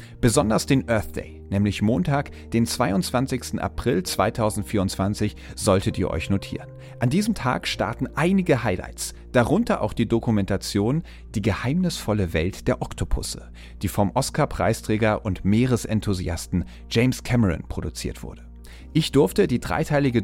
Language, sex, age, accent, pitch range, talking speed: German, male, 40-59, German, 95-135 Hz, 125 wpm